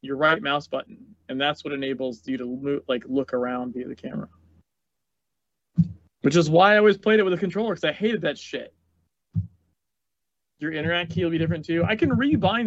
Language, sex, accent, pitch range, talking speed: English, male, American, 135-170 Hz, 195 wpm